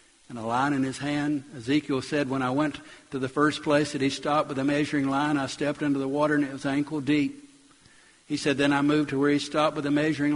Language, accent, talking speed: English, American, 255 wpm